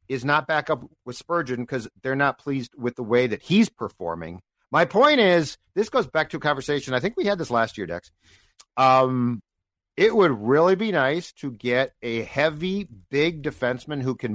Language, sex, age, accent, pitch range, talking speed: English, male, 50-69, American, 115-155 Hz, 195 wpm